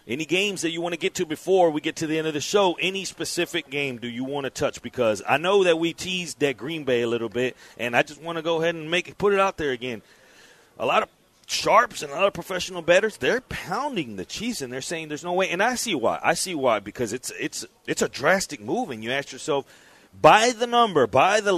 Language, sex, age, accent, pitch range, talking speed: English, male, 40-59, American, 145-185 Hz, 265 wpm